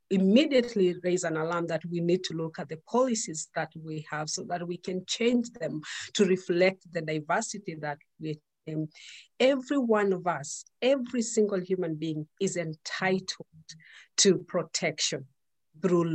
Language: English